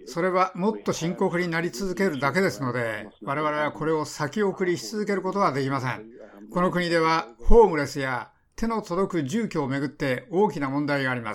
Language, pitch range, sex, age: Japanese, 140-190 Hz, male, 60-79